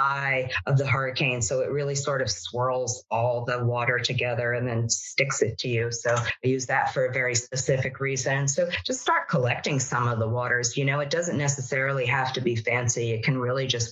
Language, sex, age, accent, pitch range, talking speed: English, female, 40-59, American, 120-140 Hz, 215 wpm